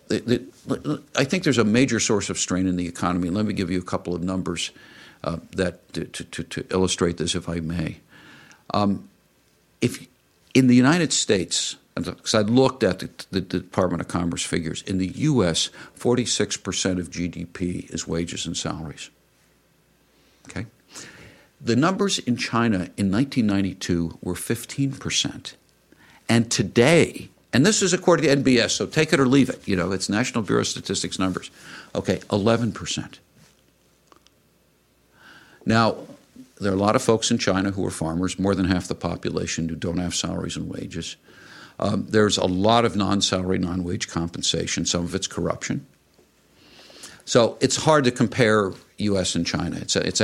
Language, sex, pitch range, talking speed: English, male, 90-120 Hz, 160 wpm